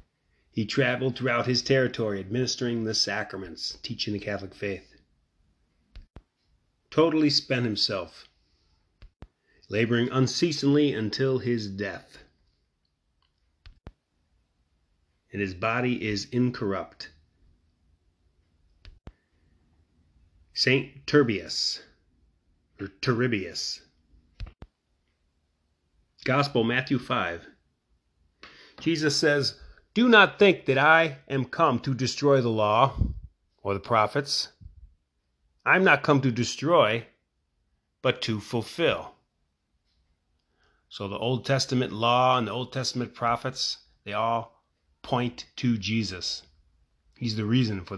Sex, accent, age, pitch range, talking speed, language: male, American, 30-49, 80-125 Hz, 95 wpm, English